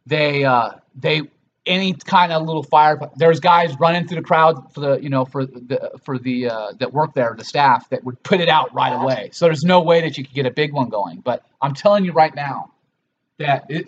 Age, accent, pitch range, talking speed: 30-49, American, 130-165 Hz, 240 wpm